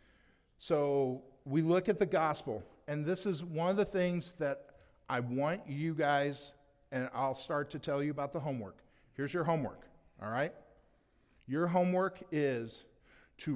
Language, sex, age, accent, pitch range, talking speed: English, male, 50-69, American, 130-175 Hz, 160 wpm